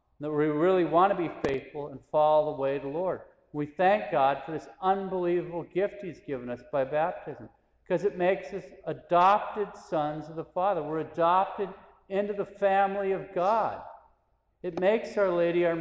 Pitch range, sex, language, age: 150-190 Hz, male, English, 50-69